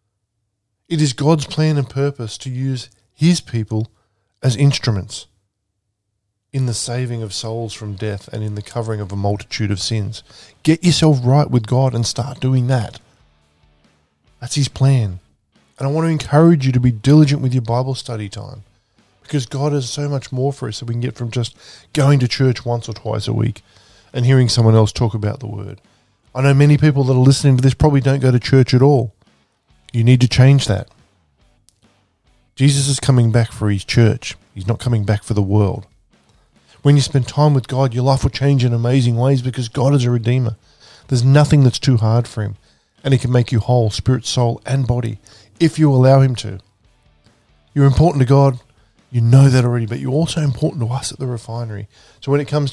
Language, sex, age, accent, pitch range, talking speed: English, male, 20-39, Australian, 110-135 Hz, 205 wpm